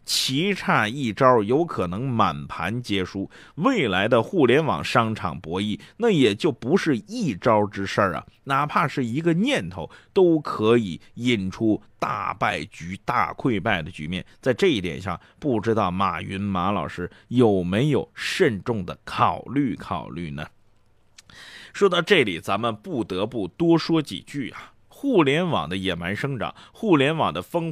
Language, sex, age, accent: Chinese, male, 30-49, native